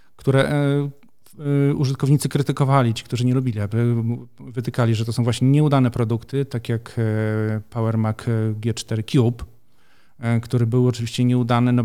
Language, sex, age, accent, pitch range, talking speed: Polish, male, 40-59, native, 115-135 Hz, 125 wpm